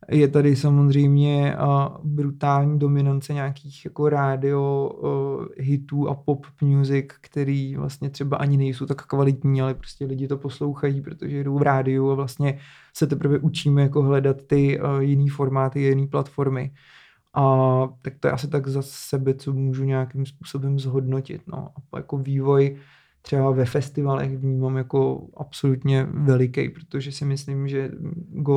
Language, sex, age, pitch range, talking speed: Czech, male, 20-39, 135-145 Hz, 145 wpm